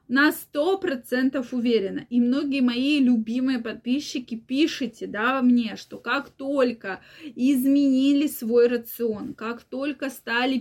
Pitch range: 230-275 Hz